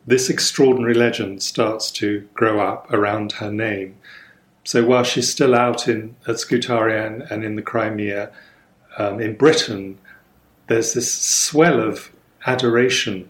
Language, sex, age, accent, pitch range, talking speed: English, male, 40-59, British, 105-125 Hz, 135 wpm